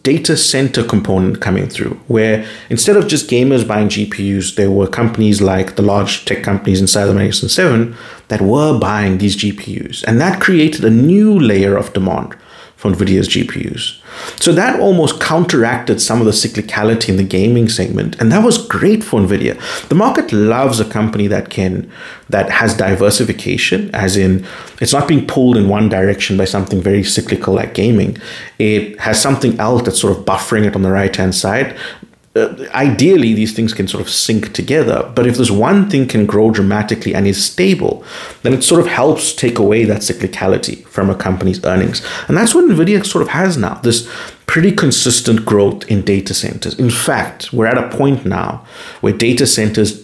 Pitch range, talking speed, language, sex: 100-125 Hz, 180 wpm, English, male